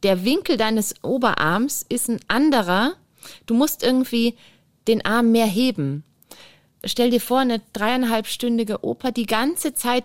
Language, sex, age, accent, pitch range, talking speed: German, female, 30-49, German, 185-240 Hz, 135 wpm